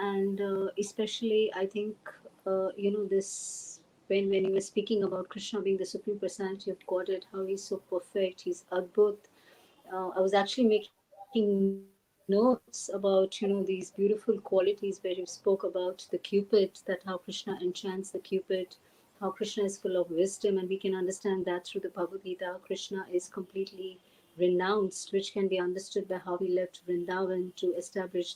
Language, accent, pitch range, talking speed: English, Indian, 185-200 Hz, 175 wpm